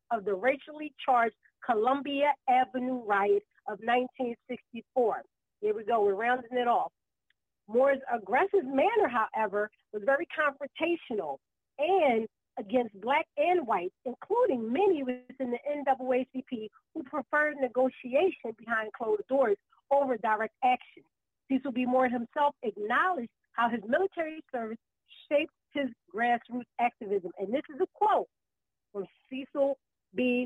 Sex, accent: female, American